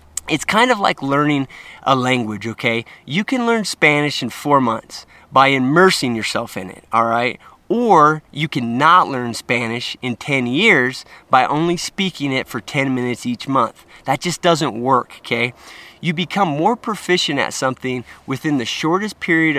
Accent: American